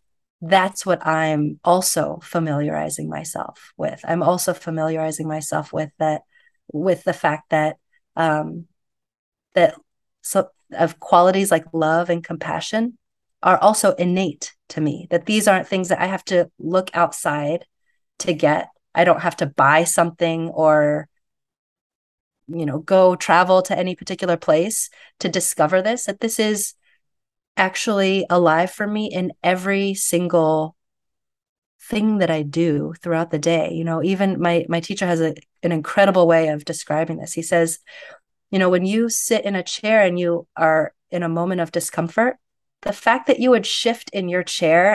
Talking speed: 160 wpm